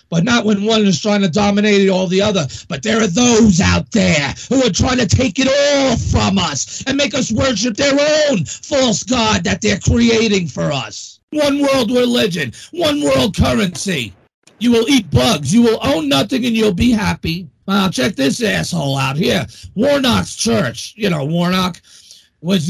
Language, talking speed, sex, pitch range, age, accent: English, 180 wpm, male, 175-235 Hz, 40-59, American